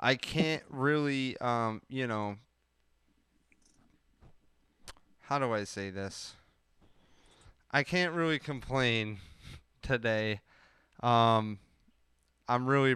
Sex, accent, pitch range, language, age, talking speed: male, American, 115-135 Hz, English, 20-39, 90 wpm